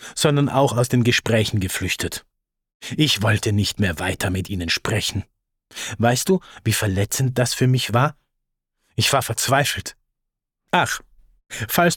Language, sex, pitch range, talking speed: English, male, 110-135 Hz, 135 wpm